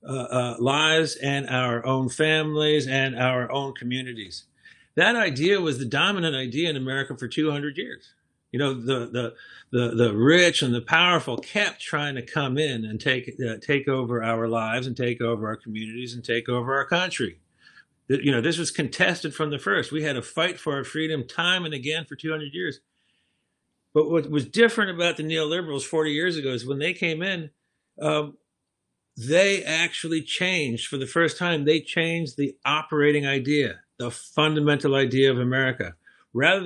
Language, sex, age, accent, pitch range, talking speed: English, male, 50-69, American, 130-160 Hz, 180 wpm